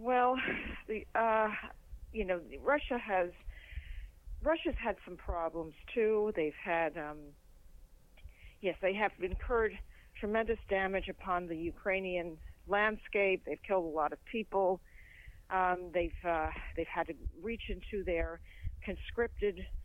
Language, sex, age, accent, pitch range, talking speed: English, female, 50-69, American, 165-215 Hz, 125 wpm